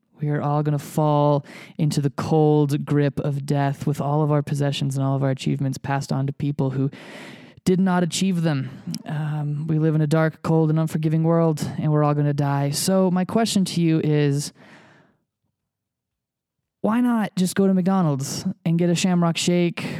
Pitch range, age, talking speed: 140-185 Hz, 20-39, 185 wpm